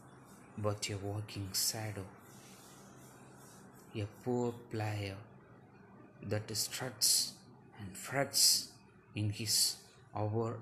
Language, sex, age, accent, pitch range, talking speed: English, male, 20-39, Indian, 100-115 Hz, 80 wpm